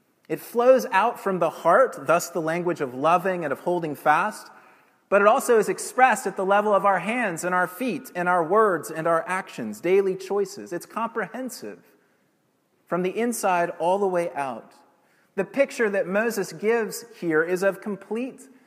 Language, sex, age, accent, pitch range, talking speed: English, male, 30-49, American, 170-225 Hz, 175 wpm